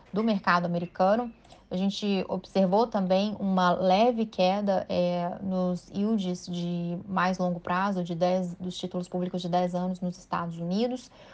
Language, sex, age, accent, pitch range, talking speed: Portuguese, female, 20-39, Brazilian, 180-205 Hz, 150 wpm